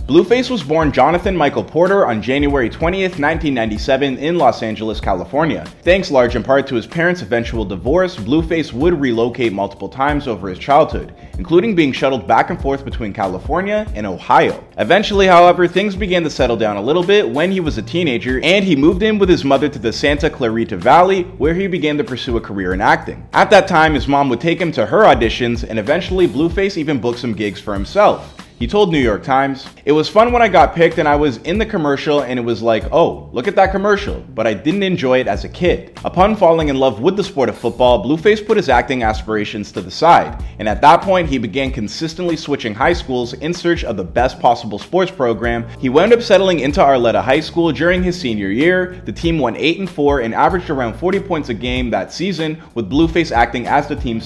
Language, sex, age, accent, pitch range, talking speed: English, male, 20-39, American, 120-175 Hz, 220 wpm